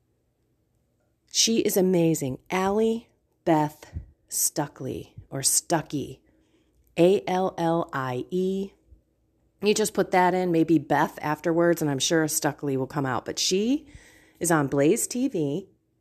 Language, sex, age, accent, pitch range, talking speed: English, female, 30-49, American, 150-210 Hz, 110 wpm